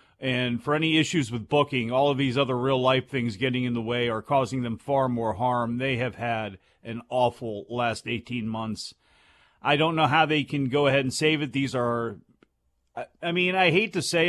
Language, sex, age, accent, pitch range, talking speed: English, male, 40-59, American, 125-160 Hz, 205 wpm